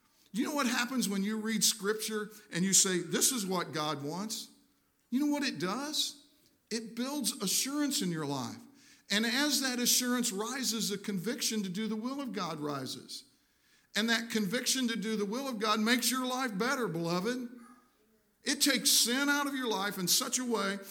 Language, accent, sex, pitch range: English, American, male, 165-245 Hz